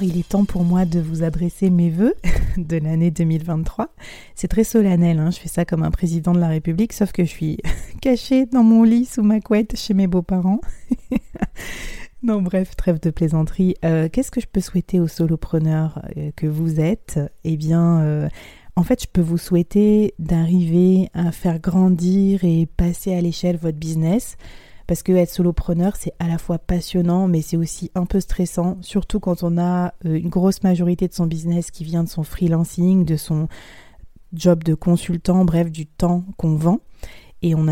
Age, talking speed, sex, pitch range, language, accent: 30-49, 185 wpm, female, 165-190 Hz, French, French